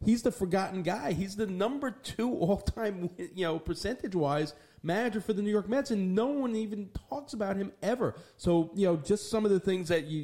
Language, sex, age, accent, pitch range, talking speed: English, male, 40-59, American, 145-195 Hz, 210 wpm